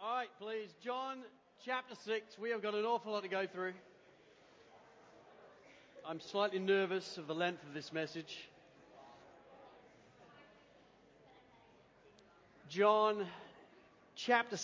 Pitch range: 145-210 Hz